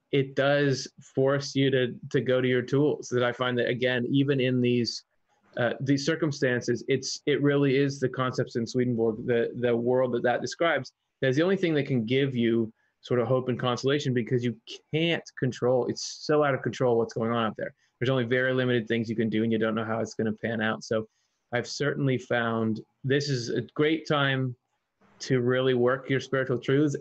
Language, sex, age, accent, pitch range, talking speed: English, male, 20-39, American, 125-150 Hz, 210 wpm